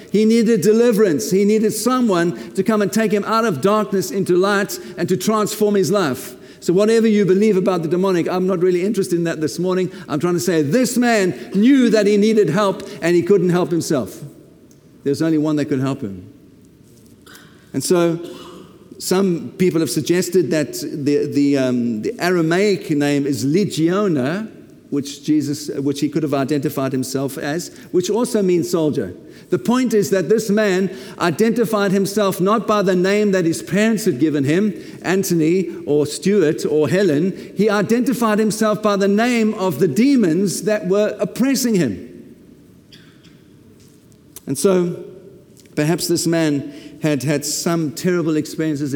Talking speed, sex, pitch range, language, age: 165 wpm, male, 150-205 Hz, English, 50-69